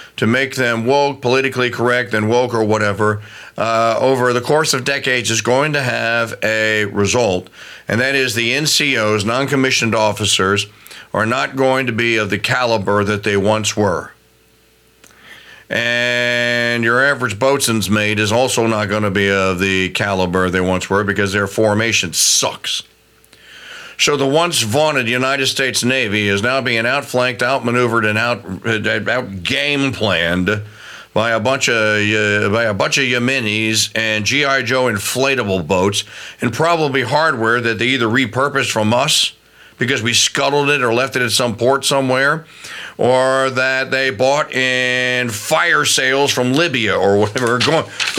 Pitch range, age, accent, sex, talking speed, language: 110-135 Hz, 50-69, American, male, 155 wpm, English